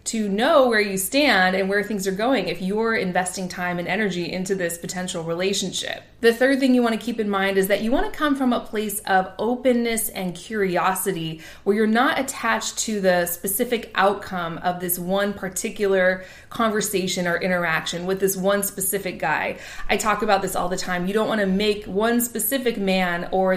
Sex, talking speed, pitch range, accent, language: female, 190 wpm, 185-220 Hz, American, English